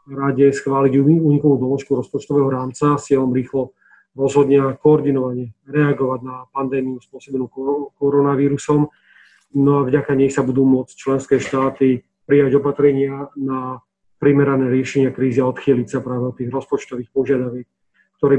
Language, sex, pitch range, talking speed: Slovak, male, 130-145 Hz, 130 wpm